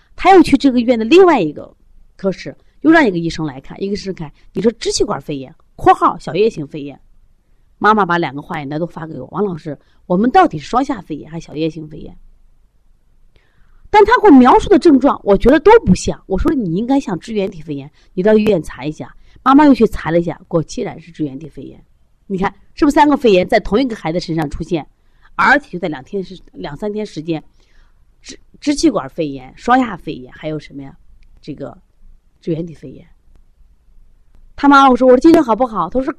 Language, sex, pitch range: Chinese, female, 160-240 Hz